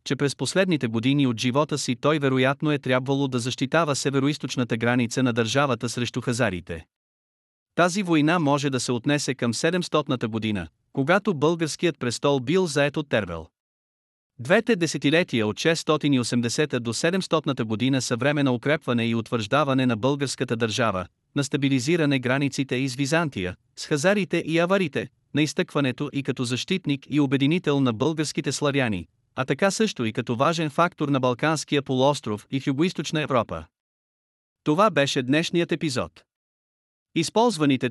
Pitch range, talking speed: 125-160 Hz, 140 wpm